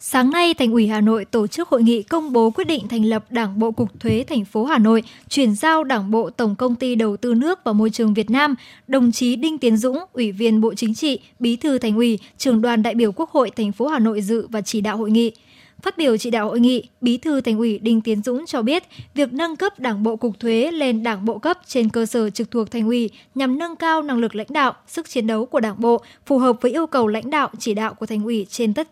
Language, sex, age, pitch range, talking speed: Vietnamese, male, 10-29, 225-280 Hz, 270 wpm